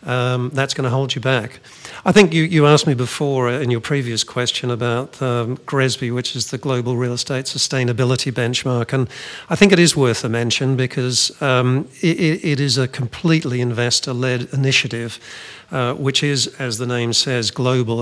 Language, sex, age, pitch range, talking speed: English, male, 50-69, 120-135 Hz, 180 wpm